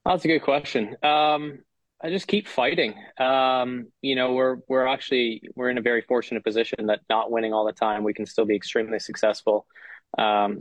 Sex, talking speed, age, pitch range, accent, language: male, 190 wpm, 20-39, 105-125 Hz, American, English